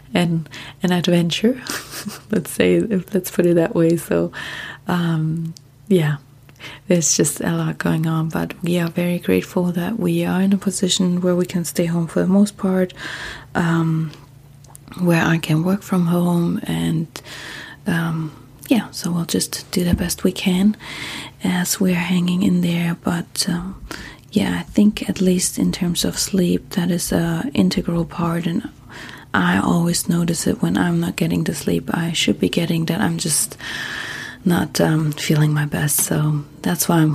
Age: 30-49